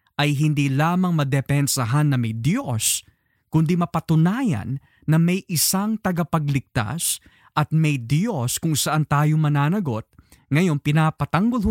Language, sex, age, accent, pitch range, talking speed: Filipino, male, 20-39, native, 130-165 Hz, 115 wpm